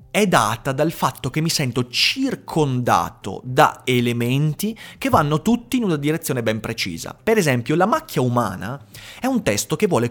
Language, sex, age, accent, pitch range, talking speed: Italian, male, 30-49, native, 115-160 Hz, 165 wpm